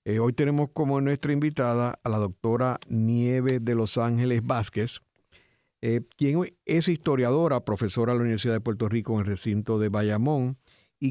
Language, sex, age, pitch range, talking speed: Spanish, male, 50-69, 105-130 Hz, 165 wpm